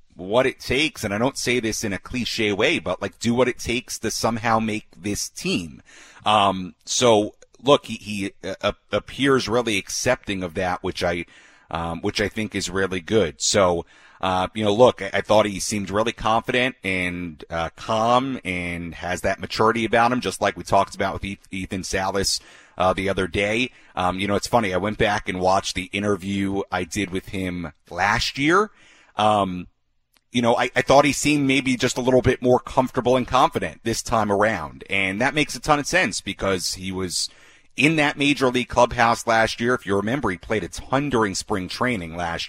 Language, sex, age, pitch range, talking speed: English, male, 30-49, 95-120 Hz, 200 wpm